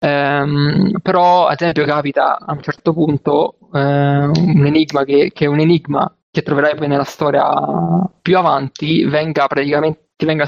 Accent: native